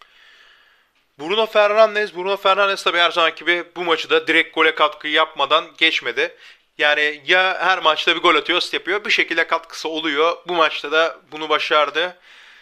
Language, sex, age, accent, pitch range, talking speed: Turkish, male, 30-49, native, 155-185 Hz, 160 wpm